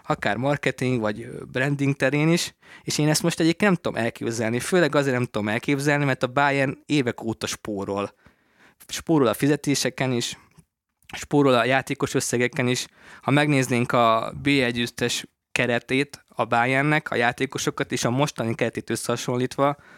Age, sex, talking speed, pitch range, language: 20-39, male, 145 wpm, 115-140 Hz, Hungarian